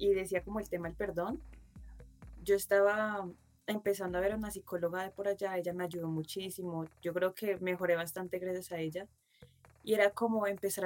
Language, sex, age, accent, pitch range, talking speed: Spanish, female, 20-39, Colombian, 175-205 Hz, 190 wpm